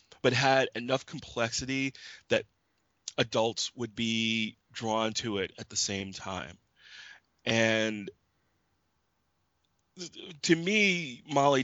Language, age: English, 30-49